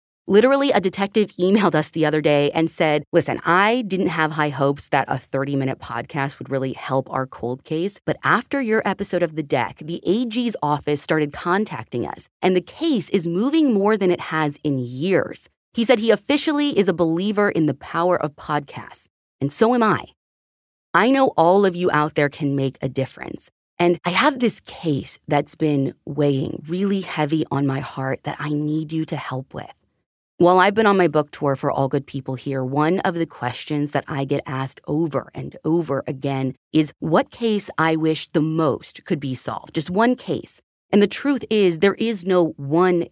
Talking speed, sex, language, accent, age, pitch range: 200 wpm, female, English, American, 30-49, 140-190 Hz